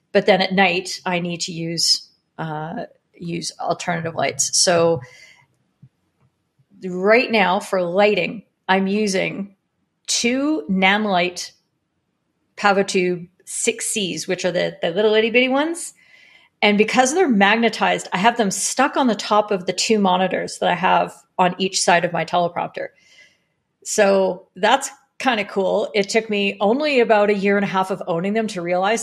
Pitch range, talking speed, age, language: 185-230 Hz, 155 wpm, 40-59, English